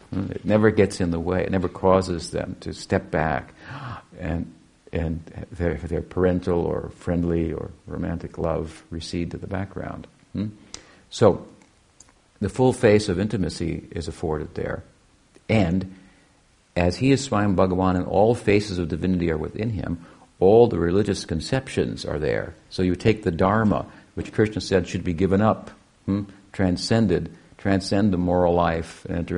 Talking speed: 160 wpm